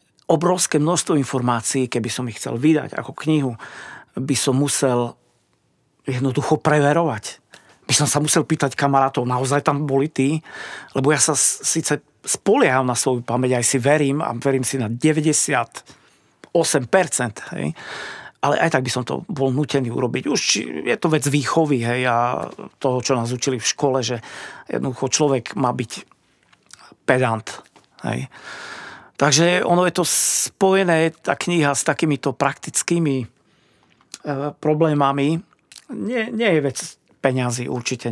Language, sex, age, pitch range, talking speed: Slovak, male, 40-59, 125-155 Hz, 140 wpm